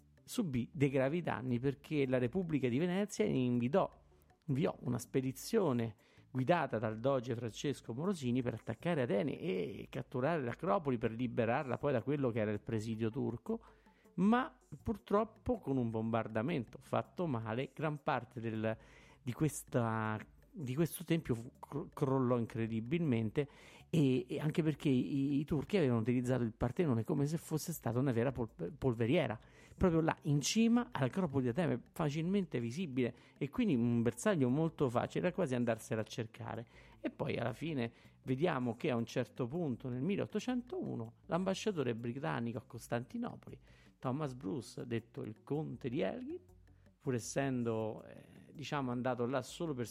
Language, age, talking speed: Italian, 50-69, 140 wpm